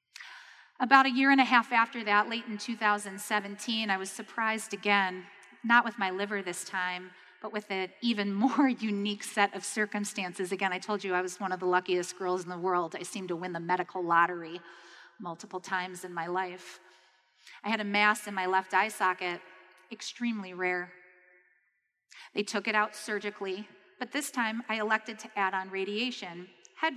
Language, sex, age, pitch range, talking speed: English, female, 30-49, 185-235 Hz, 180 wpm